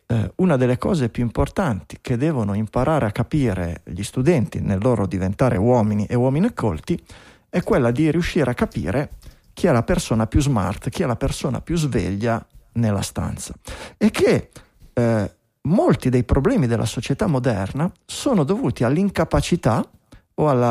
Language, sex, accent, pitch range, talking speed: Italian, male, native, 110-160 Hz, 150 wpm